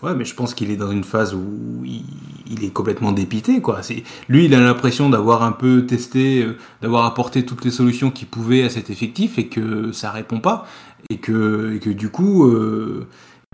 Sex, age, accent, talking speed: male, 20-39, French, 215 wpm